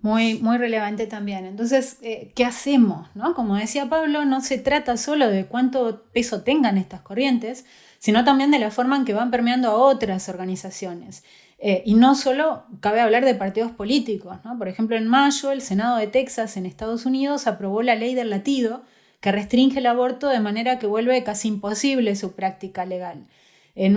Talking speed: 185 wpm